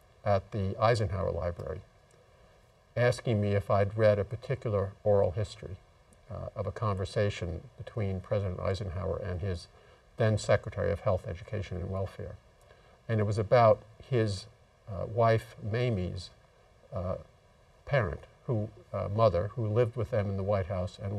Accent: American